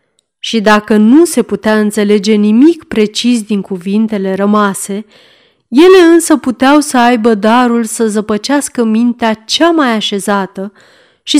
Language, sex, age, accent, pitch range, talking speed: Romanian, female, 30-49, native, 210-285 Hz, 125 wpm